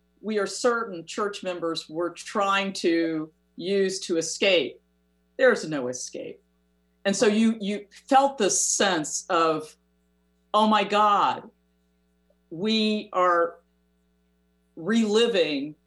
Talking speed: 105 wpm